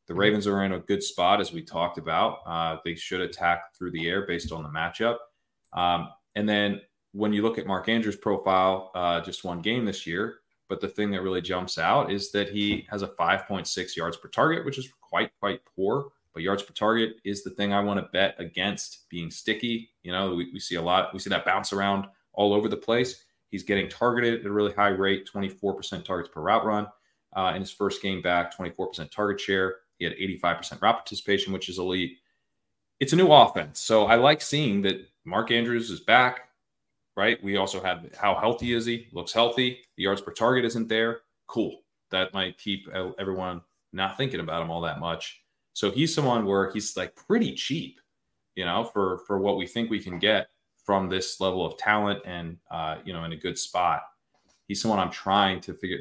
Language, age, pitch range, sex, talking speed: English, 20-39, 95-115 Hz, male, 210 wpm